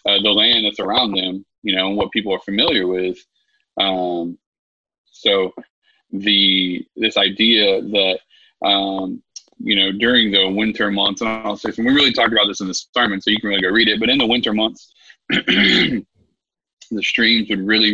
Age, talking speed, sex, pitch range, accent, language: 20-39, 185 wpm, male, 100-120 Hz, American, English